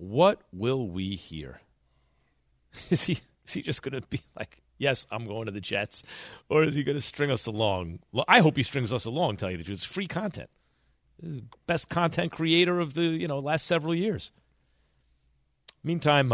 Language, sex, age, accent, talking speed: English, male, 40-59, American, 185 wpm